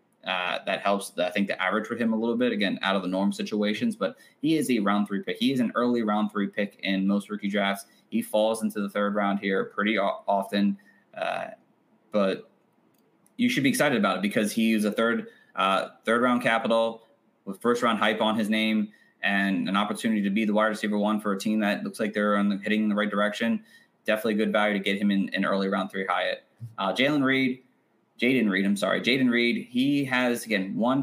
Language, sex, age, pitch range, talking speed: English, male, 20-39, 105-130 Hz, 230 wpm